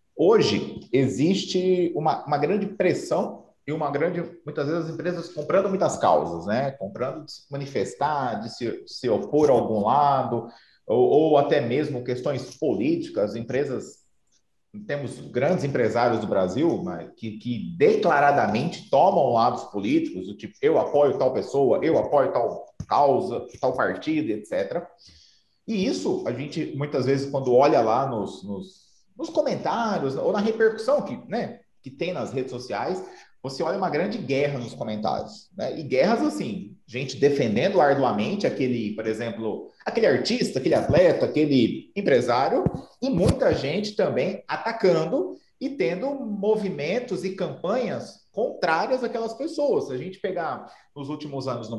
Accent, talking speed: Brazilian, 150 wpm